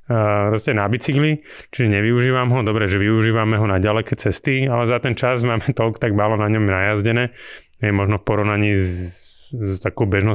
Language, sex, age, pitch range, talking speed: Slovak, male, 30-49, 100-115 Hz, 170 wpm